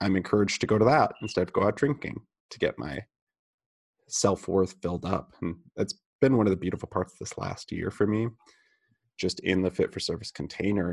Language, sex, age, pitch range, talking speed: English, male, 30-49, 90-115 Hz, 215 wpm